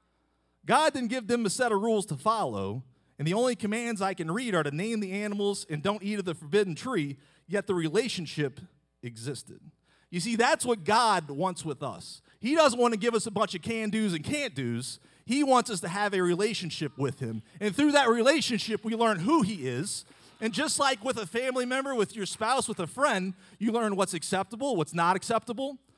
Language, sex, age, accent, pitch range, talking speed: English, male, 40-59, American, 145-225 Hz, 210 wpm